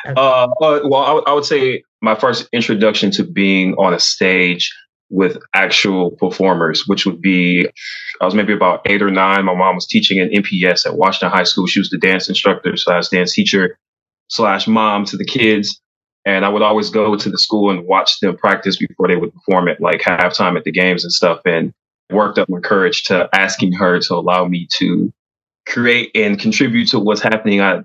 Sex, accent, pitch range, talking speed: male, American, 95-110 Hz, 200 wpm